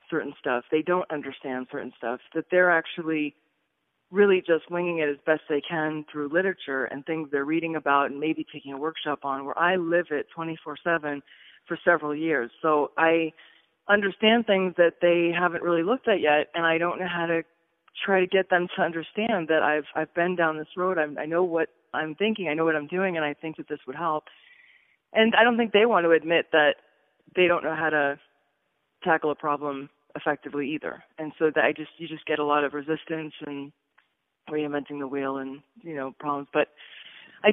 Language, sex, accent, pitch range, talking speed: English, female, American, 145-170 Hz, 205 wpm